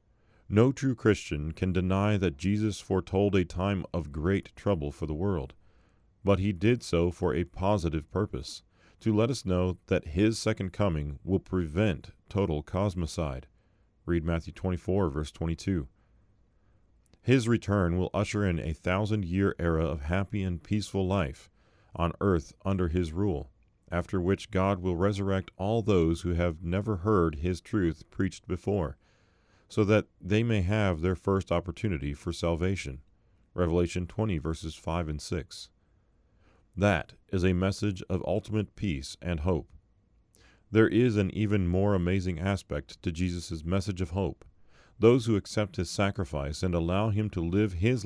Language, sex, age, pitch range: English, male, 40-59, 85-105 Hz